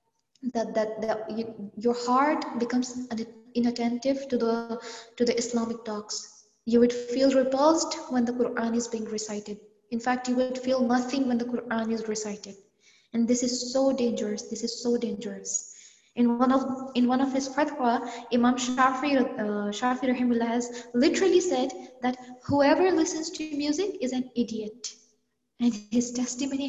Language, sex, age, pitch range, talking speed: English, female, 20-39, 230-270 Hz, 155 wpm